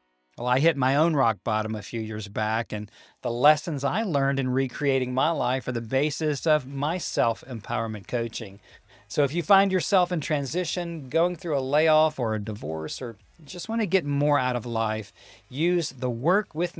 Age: 40-59